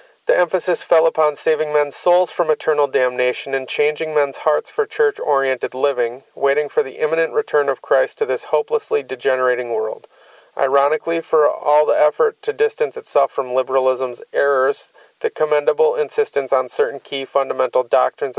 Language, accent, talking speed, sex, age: English, American, 155 wpm, male, 30-49